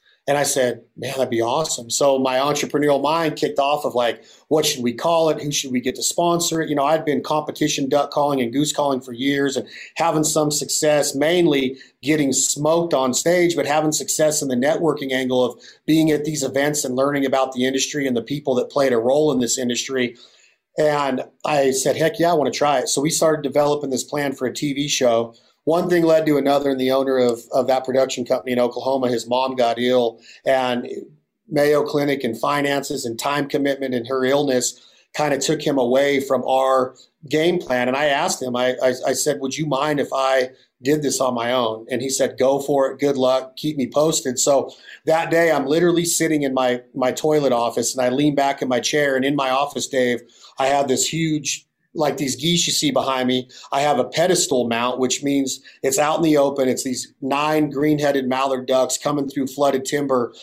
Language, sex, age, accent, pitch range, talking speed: English, male, 30-49, American, 130-150 Hz, 215 wpm